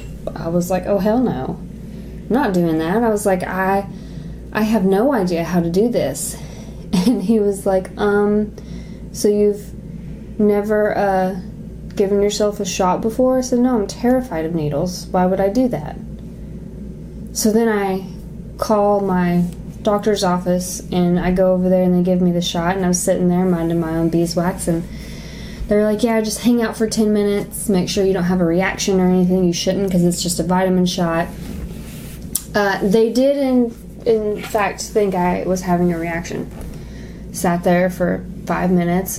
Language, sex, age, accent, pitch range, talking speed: English, female, 20-39, American, 175-205 Hz, 180 wpm